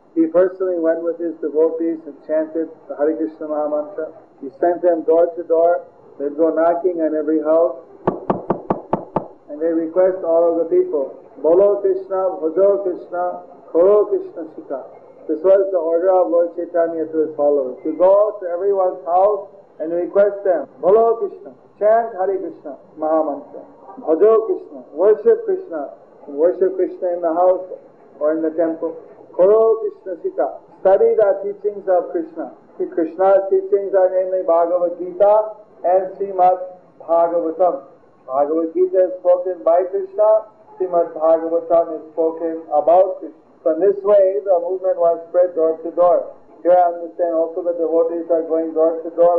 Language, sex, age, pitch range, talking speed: English, male, 50-69, 165-190 Hz, 155 wpm